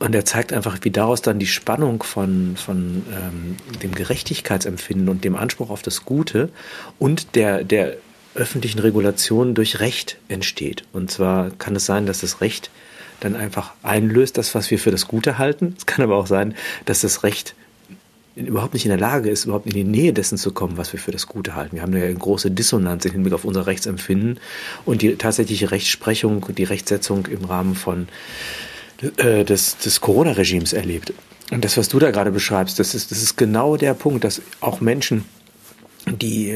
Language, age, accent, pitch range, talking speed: German, 50-69, German, 95-115 Hz, 185 wpm